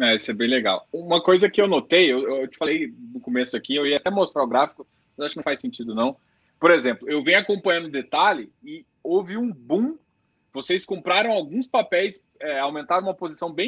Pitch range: 160-230 Hz